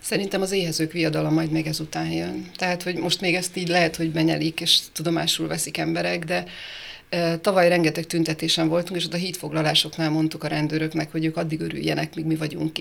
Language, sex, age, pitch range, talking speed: Hungarian, female, 30-49, 160-175 Hz, 185 wpm